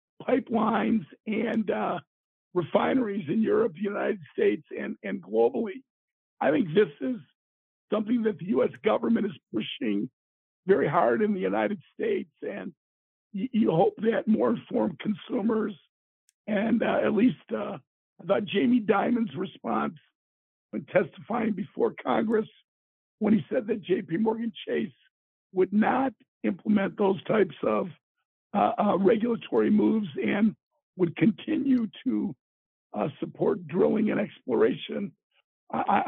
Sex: male